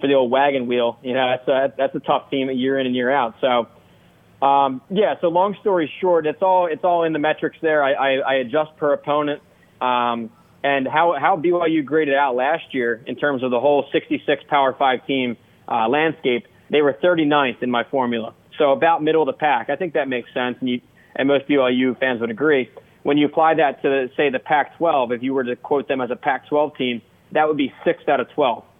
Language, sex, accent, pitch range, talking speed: English, male, American, 125-150 Hz, 225 wpm